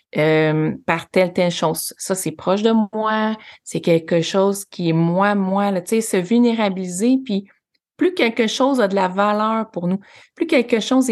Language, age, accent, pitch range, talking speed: French, 30-49, Canadian, 185-225 Hz, 185 wpm